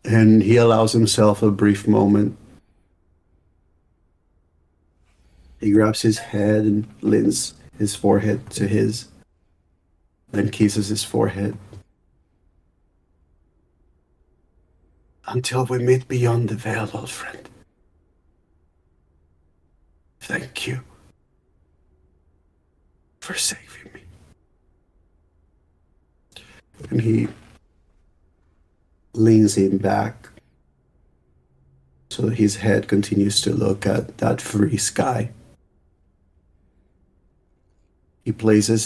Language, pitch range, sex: English, 75-105 Hz, male